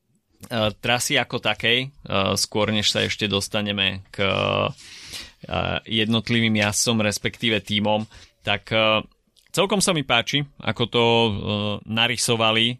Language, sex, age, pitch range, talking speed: Slovak, male, 30-49, 100-115 Hz, 100 wpm